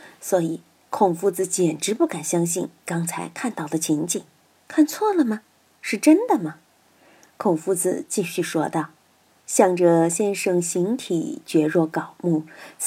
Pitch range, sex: 170-270 Hz, female